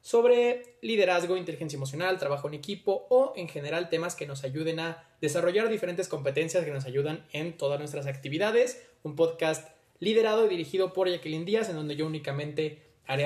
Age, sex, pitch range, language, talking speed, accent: 20-39, male, 160-225 Hz, Spanish, 170 wpm, Mexican